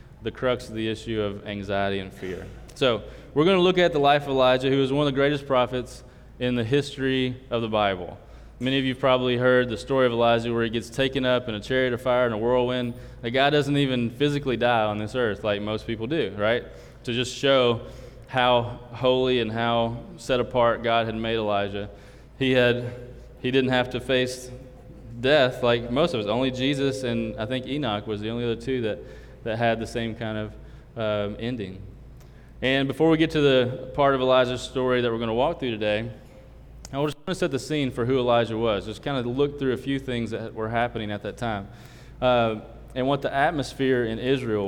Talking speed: 220 wpm